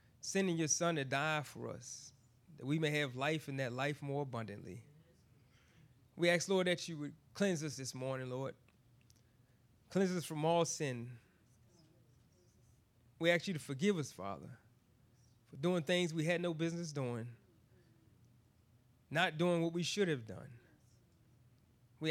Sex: male